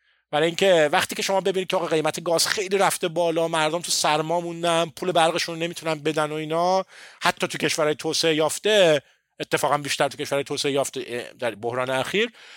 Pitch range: 130-185 Hz